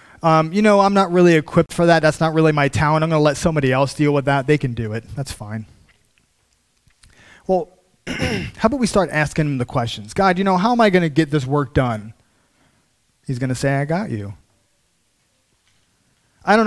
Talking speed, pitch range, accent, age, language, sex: 210 wpm, 120-175 Hz, American, 30-49, English, male